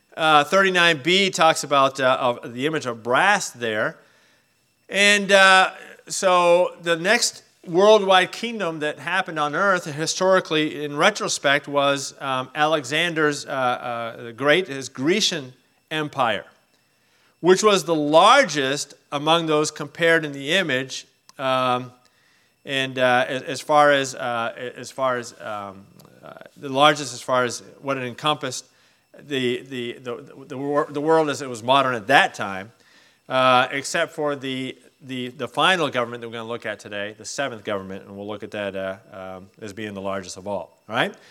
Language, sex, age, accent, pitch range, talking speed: English, male, 40-59, American, 125-165 Hz, 160 wpm